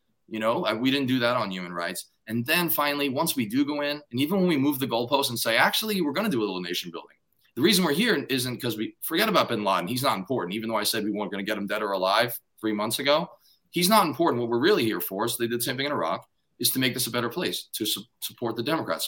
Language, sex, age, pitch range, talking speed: English, male, 20-39, 110-145 Hz, 290 wpm